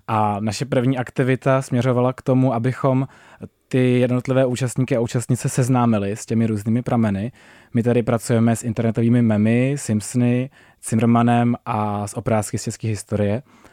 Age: 20-39